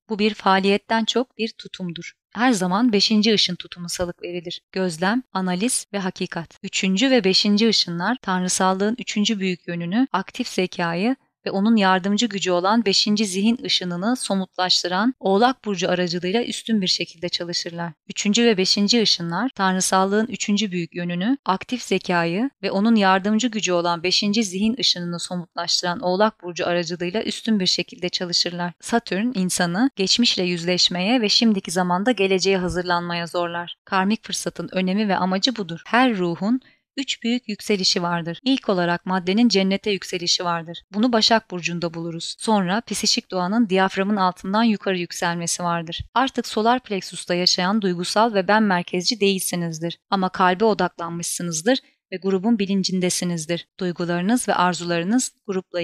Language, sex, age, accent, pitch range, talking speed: Turkish, female, 30-49, native, 175-220 Hz, 140 wpm